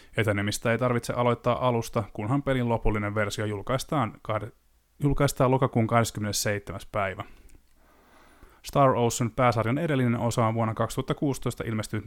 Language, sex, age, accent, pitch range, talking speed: Finnish, male, 20-39, native, 105-130 Hz, 115 wpm